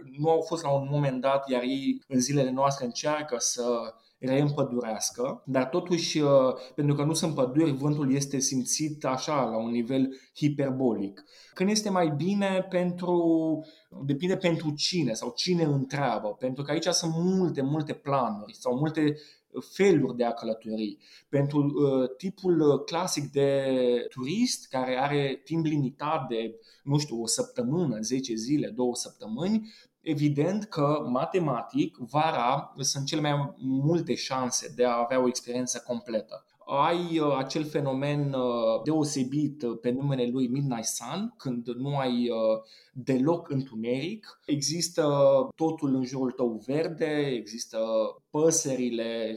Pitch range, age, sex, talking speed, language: 125-160 Hz, 20-39, male, 130 wpm, Romanian